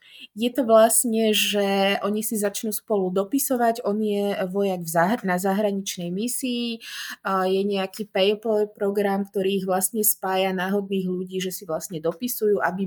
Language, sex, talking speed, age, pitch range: Slovak, female, 155 wpm, 20-39, 190-225 Hz